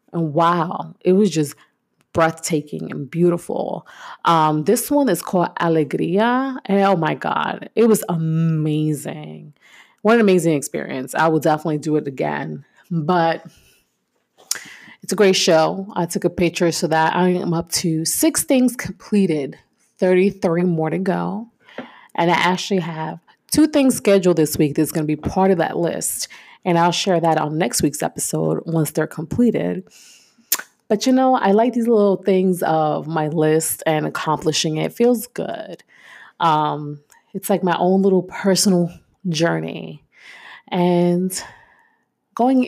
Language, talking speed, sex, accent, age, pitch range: English, 150 wpm, female, American, 30-49, 160-205 Hz